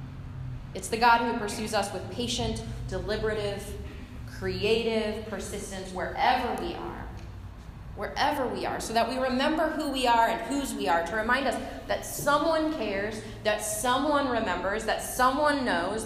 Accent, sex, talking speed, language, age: American, female, 150 wpm, English, 30-49